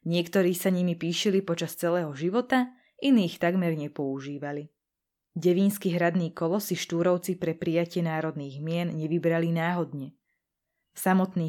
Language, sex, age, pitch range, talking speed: Slovak, female, 20-39, 160-195 Hz, 110 wpm